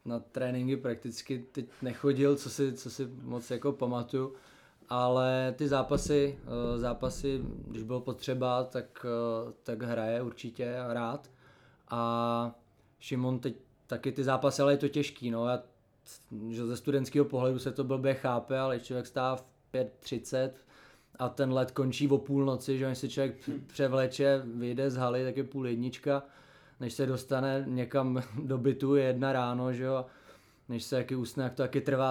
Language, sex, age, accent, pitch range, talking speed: Czech, male, 20-39, native, 120-135 Hz, 155 wpm